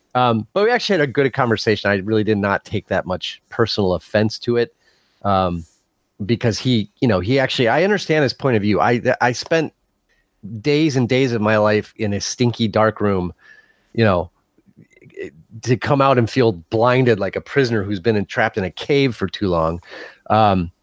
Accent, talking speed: American, 195 wpm